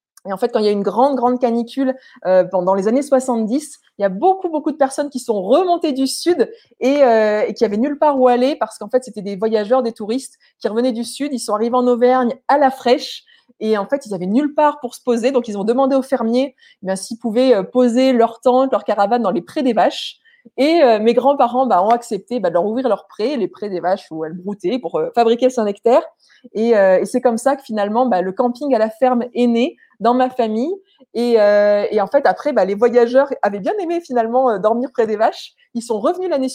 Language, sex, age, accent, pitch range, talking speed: French, female, 20-39, French, 220-270 Hz, 250 wpm